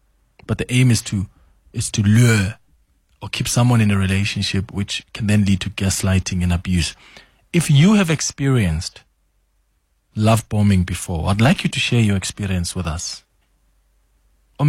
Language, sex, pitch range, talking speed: English, male, 95-120 Hz, 160 wpm